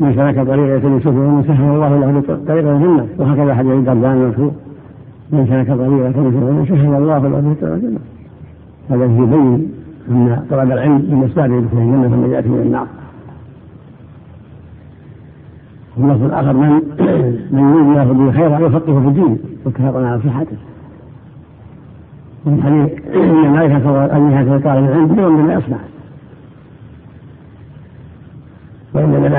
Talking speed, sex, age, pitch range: 105 wpm, male, 60-79, 130-150 Hz